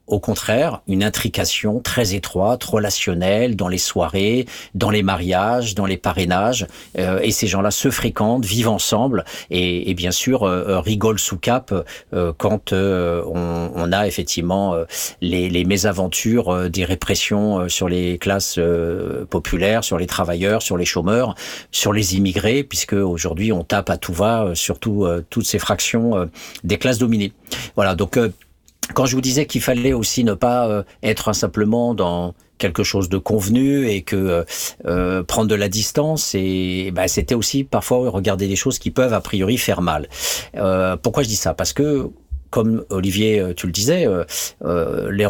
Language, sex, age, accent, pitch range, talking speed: French, male, 50-69, French, 90-115 Hz, 175 wpm